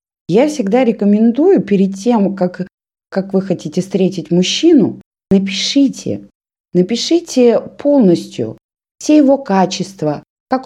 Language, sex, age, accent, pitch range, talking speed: Russian, female, 20-39, native, 195-260 Hz, 100 wpm